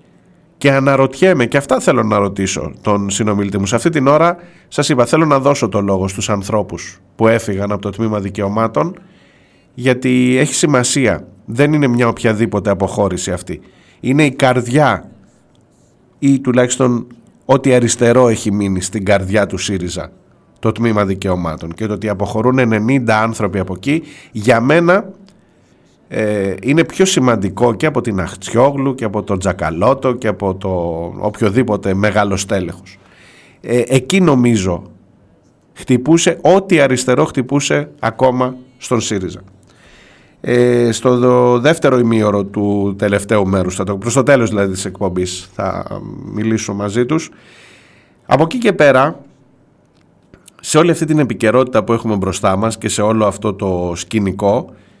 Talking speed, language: 135 wpm, Greek